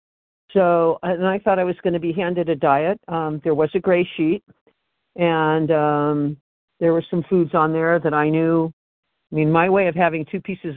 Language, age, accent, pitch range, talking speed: English, 50-69, American, 155-195 Hz, 205 wpm